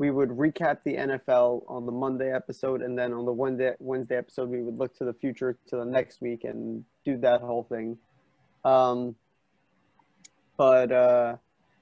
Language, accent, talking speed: English, American, 170 wpm